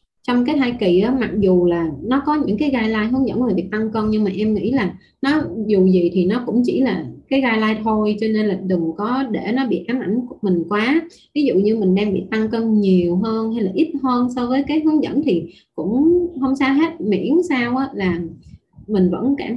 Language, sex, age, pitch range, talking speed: Vietnamese, female, 20-39, 185-255 Hz, 250 wpm